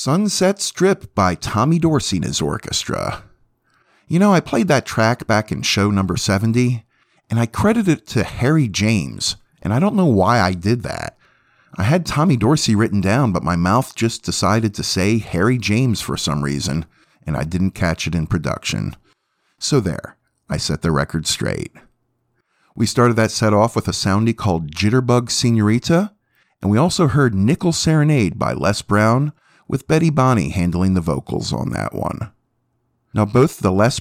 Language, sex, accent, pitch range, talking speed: English, male, American, 95-125 Hz, 175 wpm